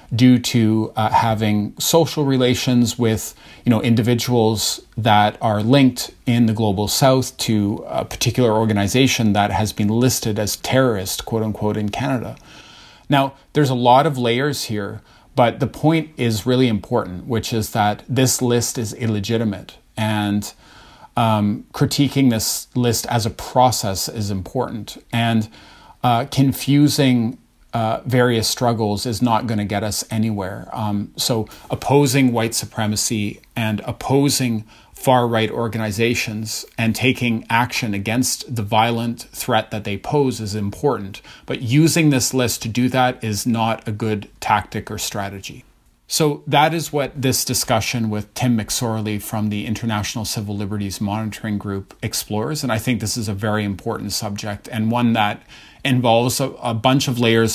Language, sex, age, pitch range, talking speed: English, male, 30-49, 105-125 Hz, 150 wpm